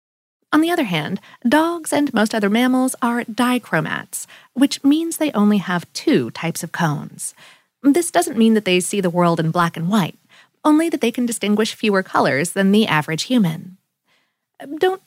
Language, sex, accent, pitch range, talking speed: English, female, American, 180-265 Hz, 175 wpm